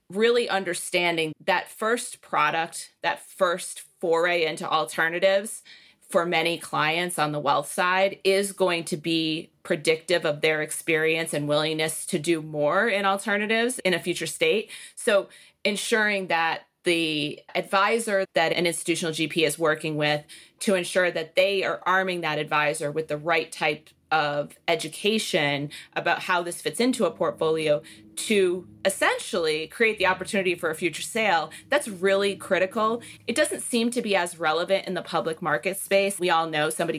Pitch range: 155-195 Hz